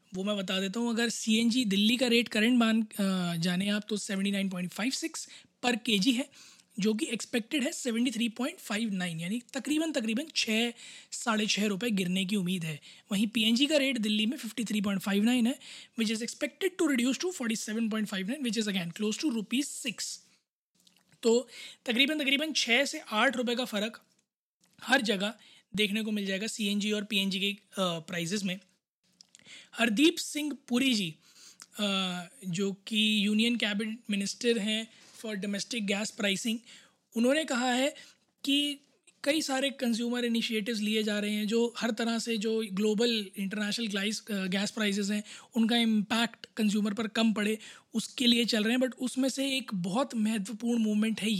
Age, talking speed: 20-39, 155 wpm